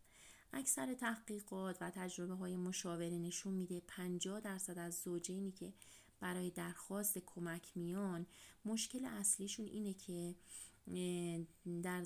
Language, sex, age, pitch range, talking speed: Persian, female, 30-49, 170-190 Hz, 110 wpm